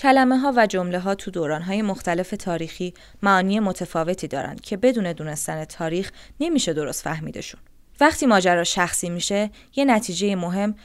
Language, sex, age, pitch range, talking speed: Persian, female, 20-39, 170-210 Hz, 150 wpm